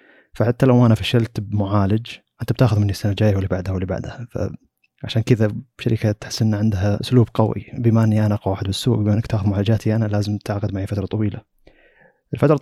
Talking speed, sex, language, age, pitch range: 185 wpm, male, Arabic, 20-39, 100-115 Hz